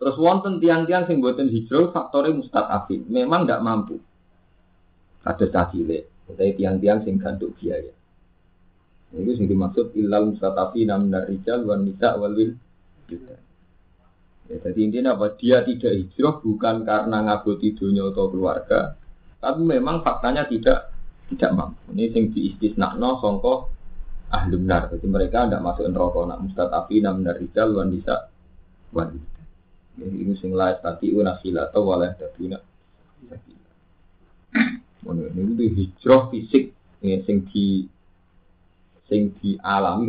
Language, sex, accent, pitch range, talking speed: Indonesian, male, native, 90-115 Hz, 120 wpm